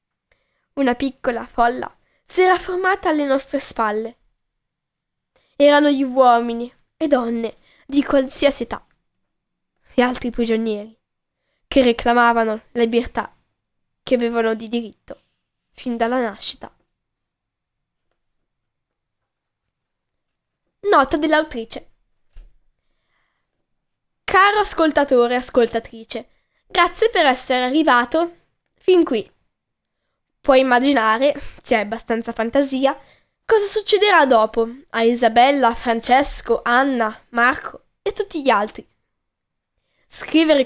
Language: Italian